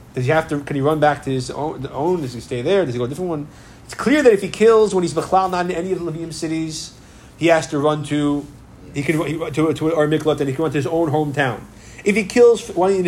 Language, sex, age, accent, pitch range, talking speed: English, male, 30-49, American, 135-180 Hz, 290 wpm